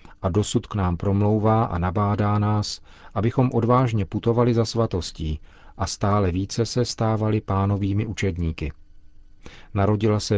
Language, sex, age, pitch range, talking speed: Czech, male, 40-59, 90-110 Hz, 125 wpm